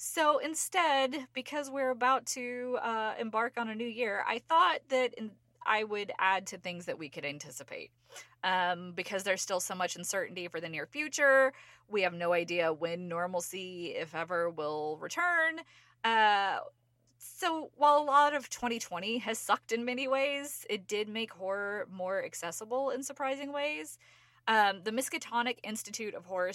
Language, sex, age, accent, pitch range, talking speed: English, female, 20-39, American, 180-250 Hz, 165 wpm